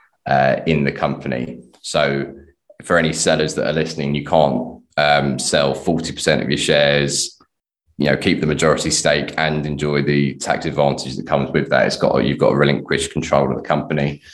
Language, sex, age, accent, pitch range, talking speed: English, male, 20-39, British, 70-75 Hz, 185 wpm